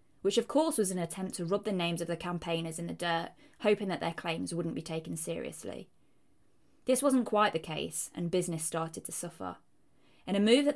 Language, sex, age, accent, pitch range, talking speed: English, female, 20-39, British, 170-220 Hz, 210 wpm